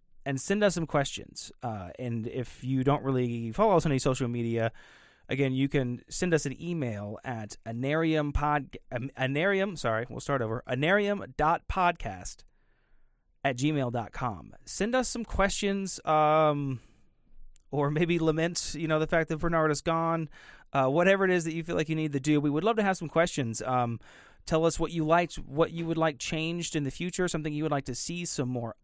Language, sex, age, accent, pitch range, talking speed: English, male, 30-49, American, 125-165 Hz, 190 wpm